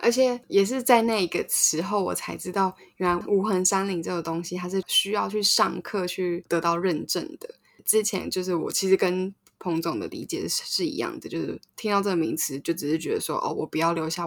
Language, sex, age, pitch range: Chinese, female, 10-29, 165-195 Hz